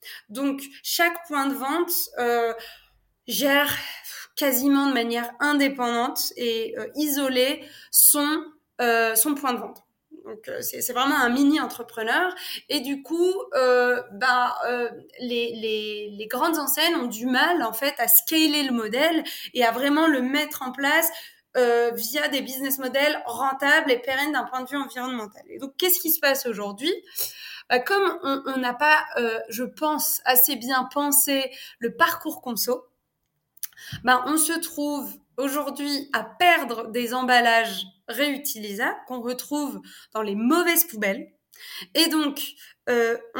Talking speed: 145 wpm